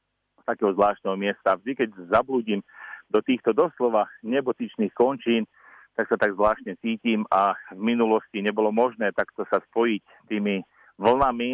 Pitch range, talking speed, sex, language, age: 105-115 Hz, 135 wpm, male, Slovak, 40-59